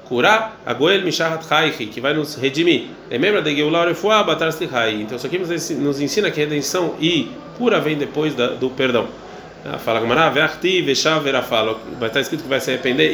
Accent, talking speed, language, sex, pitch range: Brazilian, 185 wpm, Portuguese, male, 125-160 Hz